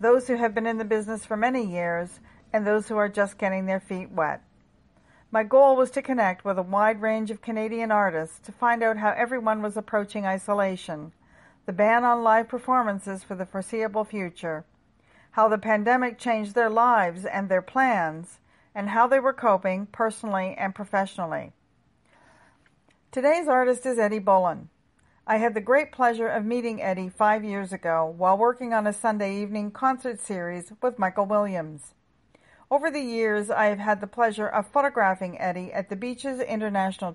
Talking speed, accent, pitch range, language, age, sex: 175 wpm, American, 190-235 Hz, English, 50-69, female